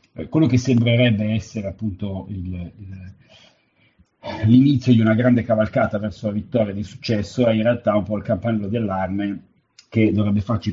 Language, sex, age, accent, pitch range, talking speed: Italian, male, 40-59, native, 100-115 Hz, 160 wpm